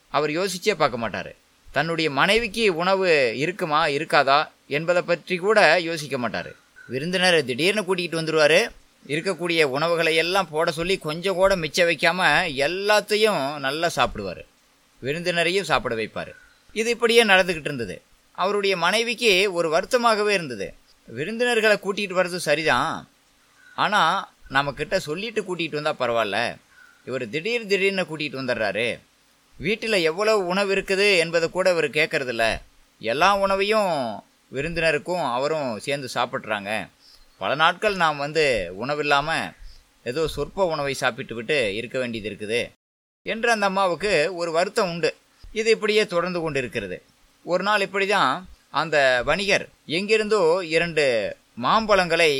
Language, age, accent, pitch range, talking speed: Tamil, 20-39, native, 150-205 Hz, 115 wpm